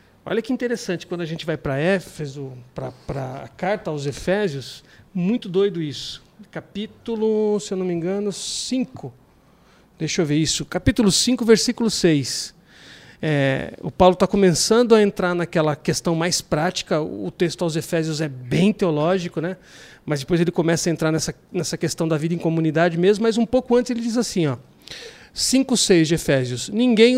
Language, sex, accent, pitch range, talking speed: Portuguese, male, Brazilian, 160-210 Hz, 165 wpm